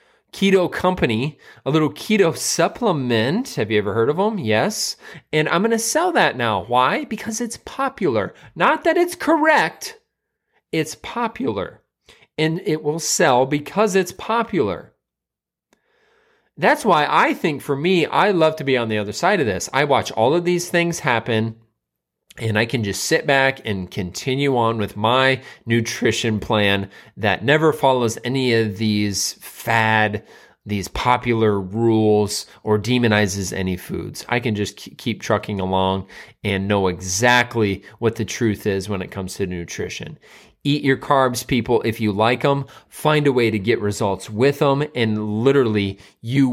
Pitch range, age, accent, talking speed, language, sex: 105-155 Hz, 30-49, American, 160 wpm, English, male